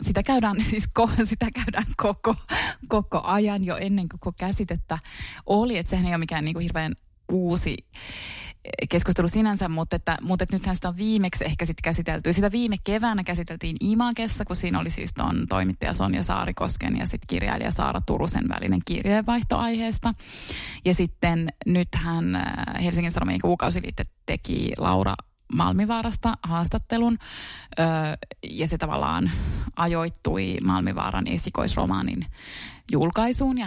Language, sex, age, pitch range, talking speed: Finnish, female, 20-39, 150-230 Hz, 135 wpm